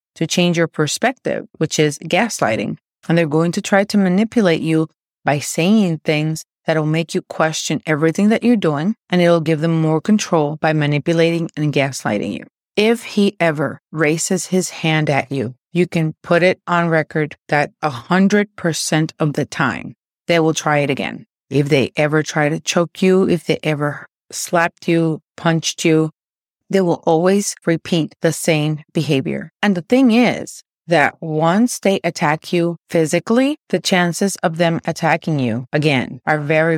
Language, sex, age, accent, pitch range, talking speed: English, female, 30-49, American, 155-185 Hz, 165 wpm